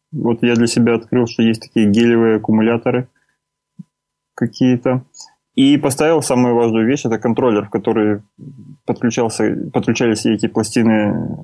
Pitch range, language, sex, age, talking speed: 105-120 Hz, Russian, male, 20-39, 120 wpm